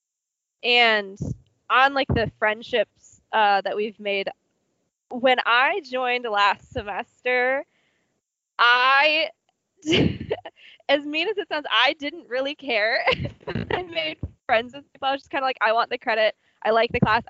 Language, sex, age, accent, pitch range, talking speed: English, female, 20-39, American, 220-275 Hz, 150 wpm